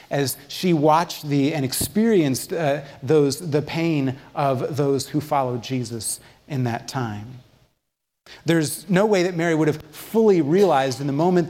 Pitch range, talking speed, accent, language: 125-160 Hz, 155 wpm, American, English